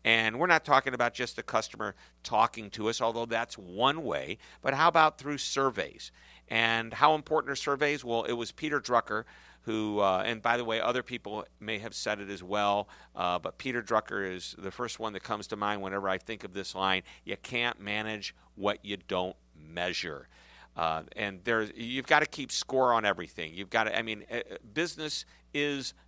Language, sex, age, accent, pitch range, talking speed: English, male, 50-69, American, 100-130 Hz, 195 wpm